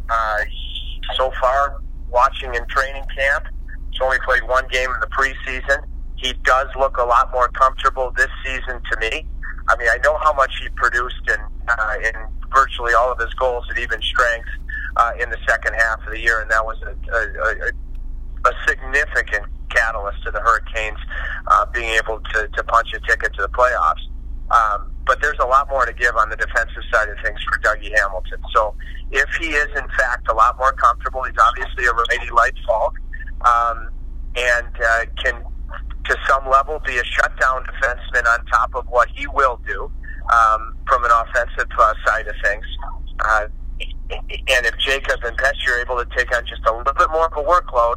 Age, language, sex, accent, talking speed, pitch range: 40-59, English, male, American, 190 wpm, 110-130 Hz